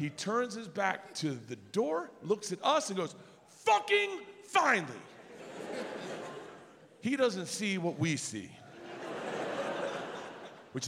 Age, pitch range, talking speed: 50-69, 185-300 Hz, 115 wpm